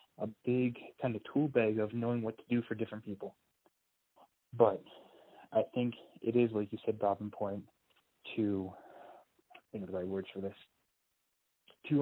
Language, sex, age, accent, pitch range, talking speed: English, male, 20-39, American, 105-140 Hz, 170 wpm